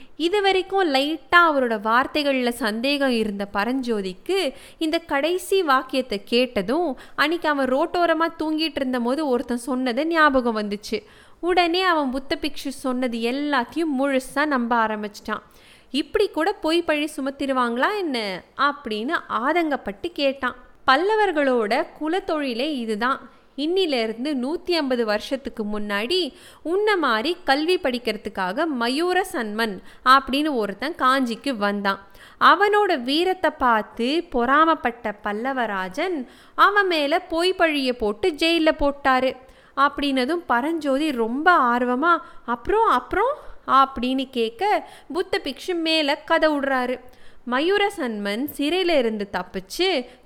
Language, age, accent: Tamil, 20-39, native